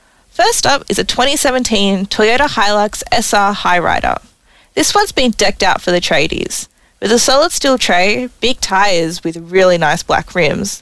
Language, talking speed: English, 160 wpm